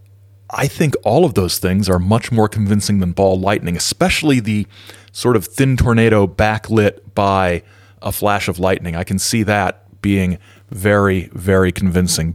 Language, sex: English, male